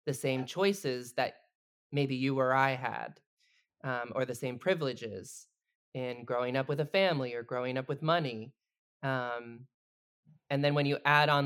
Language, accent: English, American